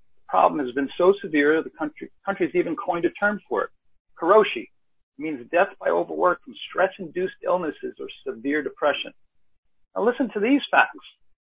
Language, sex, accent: English, male, American